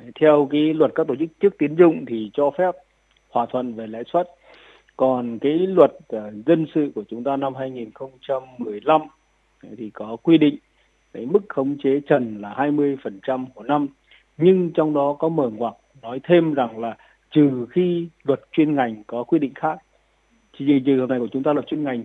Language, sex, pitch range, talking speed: Vietnamese, male, 130-160 Hz, 185 wpm